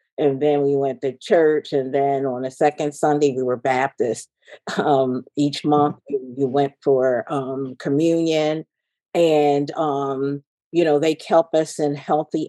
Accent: American